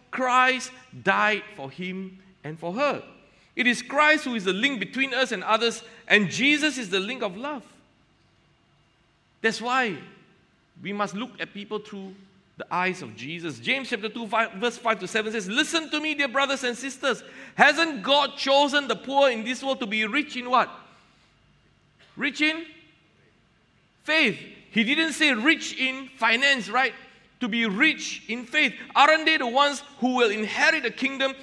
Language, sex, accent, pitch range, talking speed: English, male, Malaysian, 215-275 Hz, 170 wpm